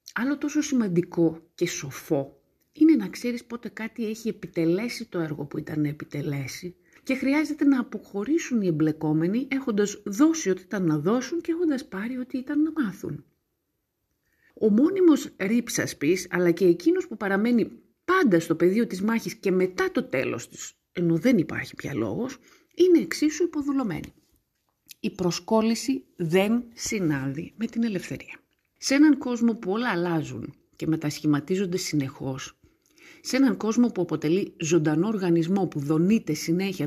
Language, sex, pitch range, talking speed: Greek, female, 155-240 Hz, 145 wpm